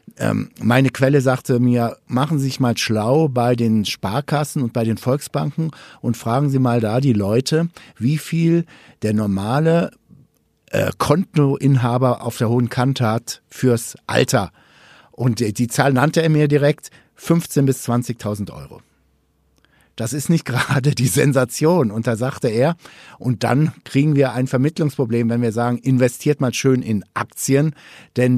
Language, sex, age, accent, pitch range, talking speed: German, male, 60-79, German, 115-140 Hz, 155 wpm